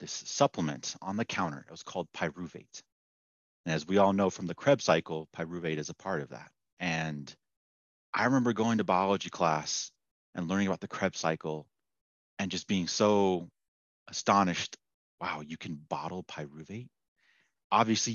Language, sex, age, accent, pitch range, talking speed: English, male, 30-49, American, 80-100 Hz, 160 wpm